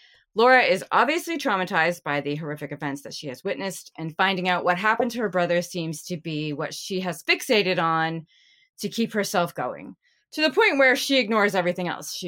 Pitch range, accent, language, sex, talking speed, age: 155-200 Hz, American, English, female, 200 wpm, 30-49